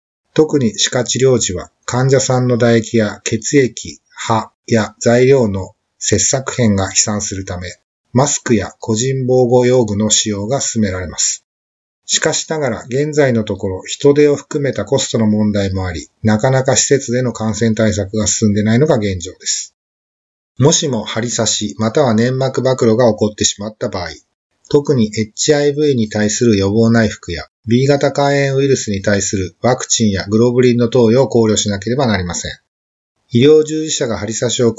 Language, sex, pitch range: Japanese, male, 105-135 Hz